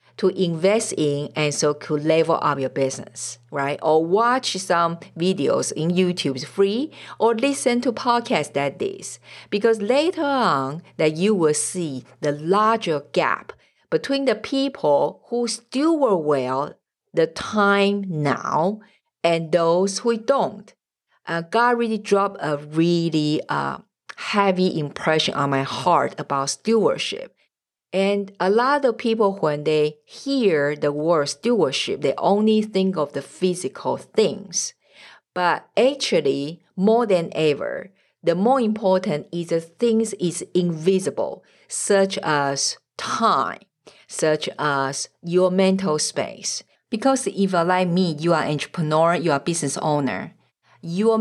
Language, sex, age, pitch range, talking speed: English, female, 50-69, 150-215 Hz, 135 wpm